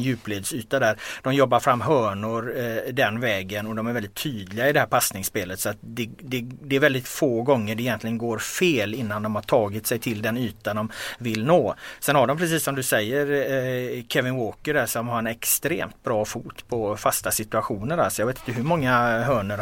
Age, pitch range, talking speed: 30-49, 105-130 Hz, 210 wpm